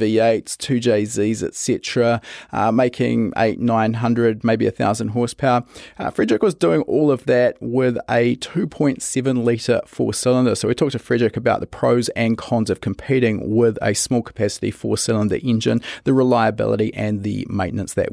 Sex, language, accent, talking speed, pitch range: male, English, Australian, 175 wpm, 115-135 Hz